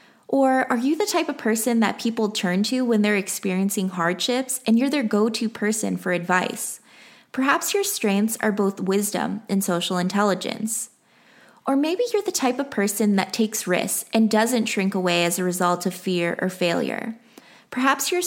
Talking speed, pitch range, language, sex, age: 175 wpm, 195-250 Hz, English, female, 20-39